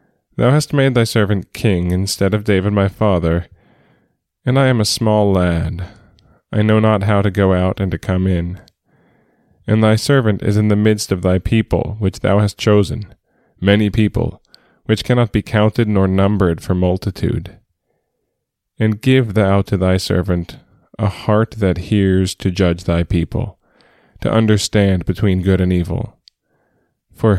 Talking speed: 160 wpm